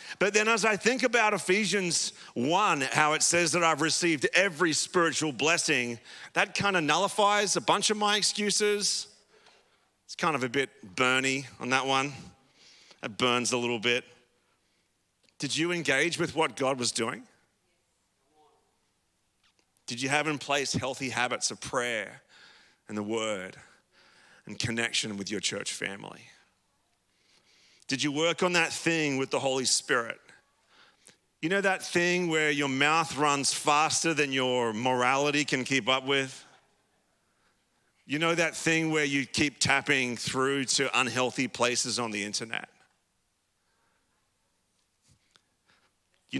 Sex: male